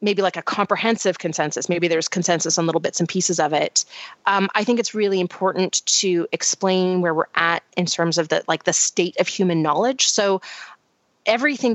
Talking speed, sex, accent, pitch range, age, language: 195 wpm, female, American, 175-210 Hz, 30-49, English